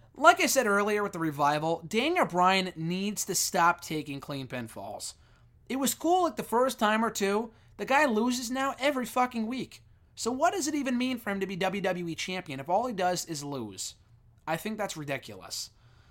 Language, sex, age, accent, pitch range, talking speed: English, male, 20-39, American, 130-190 Hz, 200 wpm